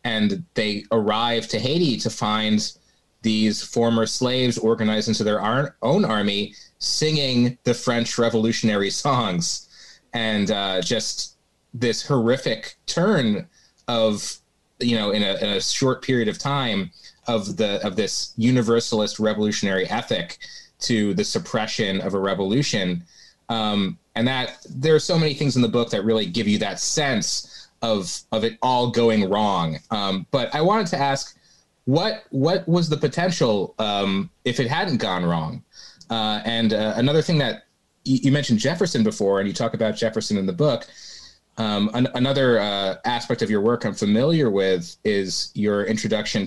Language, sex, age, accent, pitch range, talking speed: English, male, 30-49, American, 105-125 Hz, 160 wpm